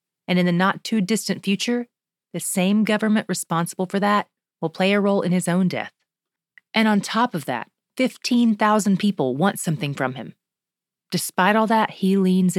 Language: English